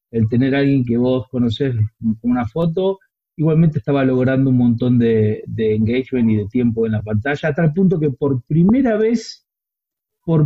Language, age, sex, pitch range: Spanish, 40-59, male, 120-160 Hz